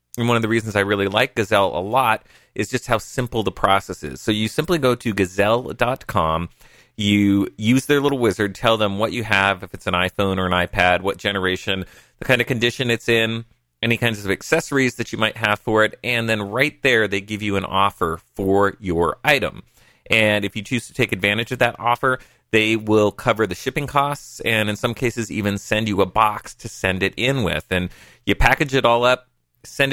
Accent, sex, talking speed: American, male, 215 wpm